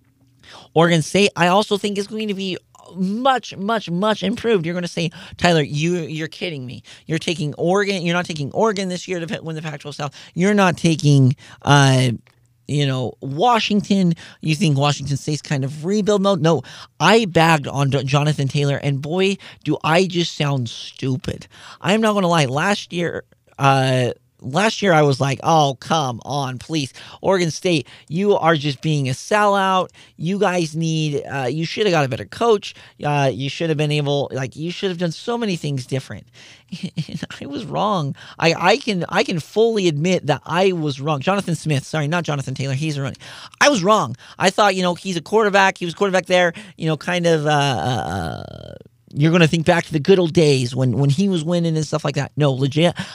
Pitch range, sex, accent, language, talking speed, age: 140-185 Hz, male, American, English, 200 wpm, 40-59